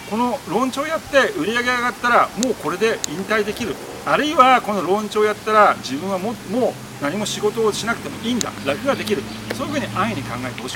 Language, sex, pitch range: Japanese, male, 155-240 Hz